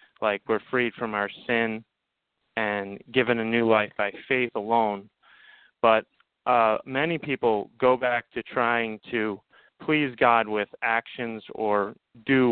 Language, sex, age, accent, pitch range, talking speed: English, male, 30-49, American, 110-125 Hz, 140 wpm